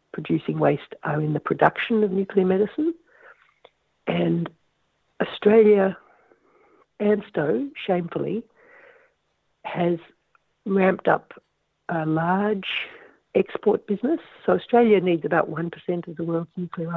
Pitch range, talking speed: 160-205 Hz, 105 wpm